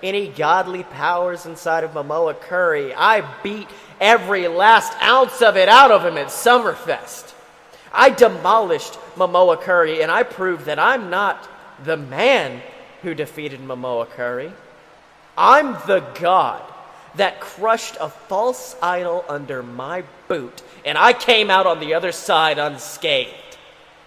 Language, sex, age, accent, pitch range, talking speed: English, male, 30-49, American, 175-265 Hz, 135 wpm